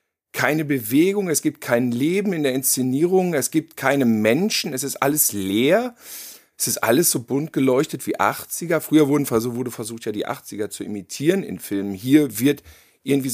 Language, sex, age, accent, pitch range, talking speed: German, male, 50-69, German, 120-155 Hz, 170 wpm